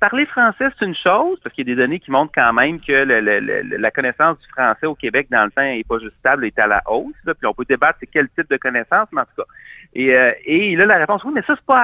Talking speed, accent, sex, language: 315 wpm, Canadian, male, French